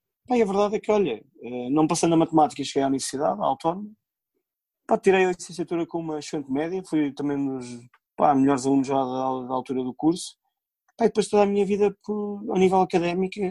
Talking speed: 180 wpm